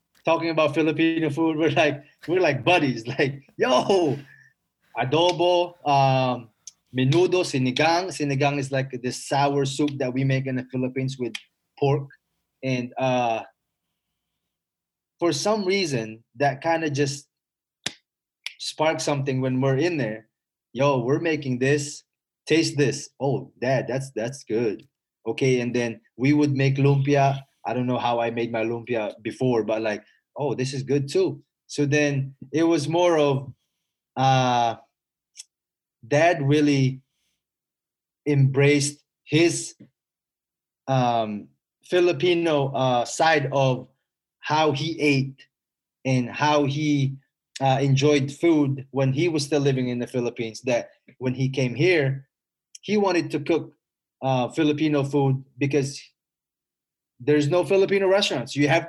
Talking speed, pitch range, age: 135 wpm, 130-155 Hz, 20-39